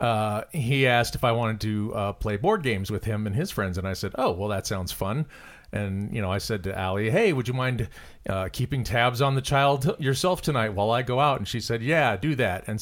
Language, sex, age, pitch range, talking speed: English, male, 40-59, 110-135 Hz, 255 wpm